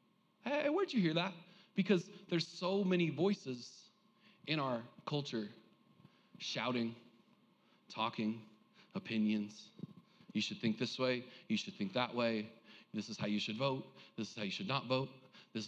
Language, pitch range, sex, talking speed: English, 140-205 Hz, male, 155 wpm